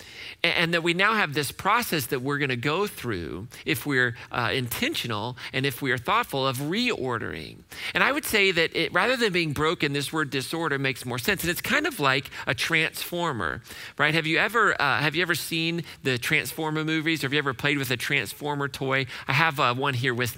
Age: 40-59